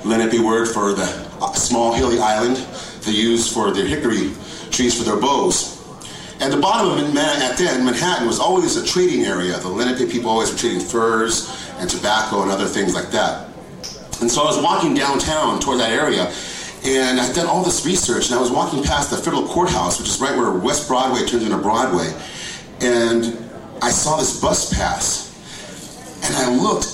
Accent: American